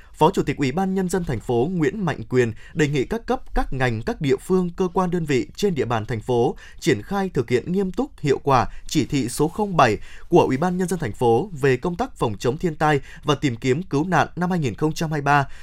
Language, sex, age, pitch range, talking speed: Vietnamese, male, 20-39, 130-185 Hz, 240 wpm